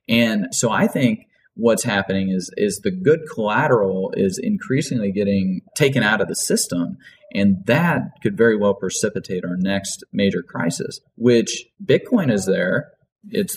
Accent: American